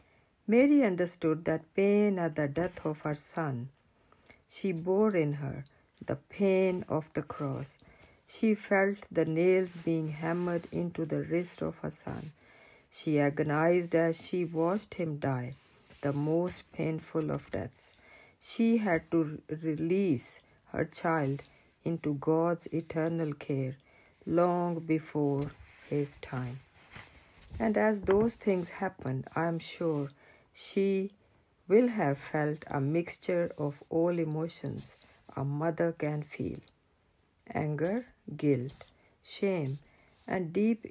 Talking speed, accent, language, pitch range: 120 wpm, Indian, English, 145-180 Hz